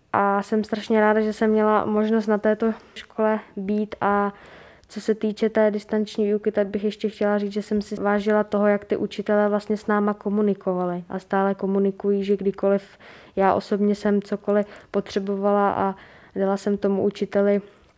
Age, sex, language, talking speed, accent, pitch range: 10-29, female, Czech, 170 wpm, native, 200-215 Hz